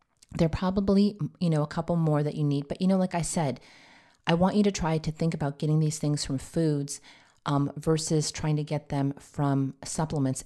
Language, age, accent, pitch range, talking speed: English, 30-49, American, 140-160 Hz, 210 wpm